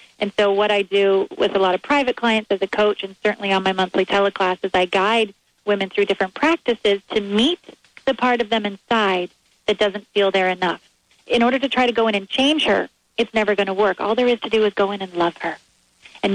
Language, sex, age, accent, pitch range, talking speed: English, female, 30-49, American, 190-210 Hz, 240 wpm